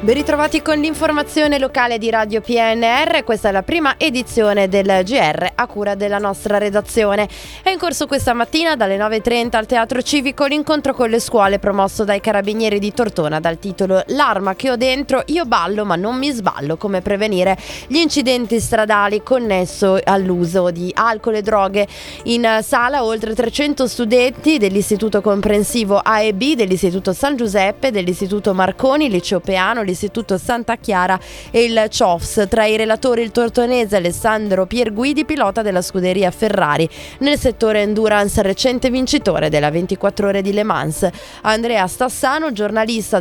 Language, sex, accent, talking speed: Italian, female, native, 155 wpm